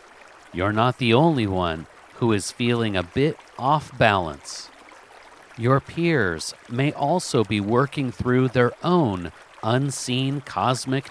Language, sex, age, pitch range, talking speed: English, male, 50-69, 110-145 Hz, 120 wpm